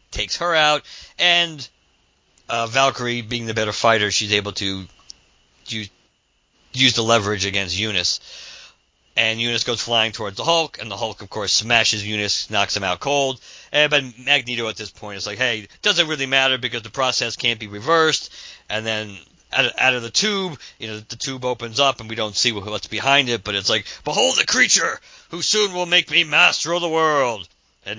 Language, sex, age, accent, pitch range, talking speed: English, male, 50-69, American, 105-135 Hz, 195 wpm